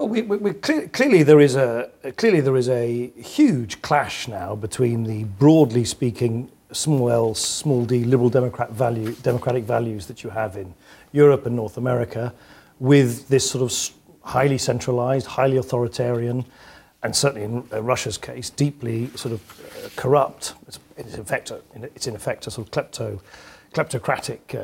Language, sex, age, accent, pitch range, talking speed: English, male, 40-59, British, 115-140 Hz, 160 wpm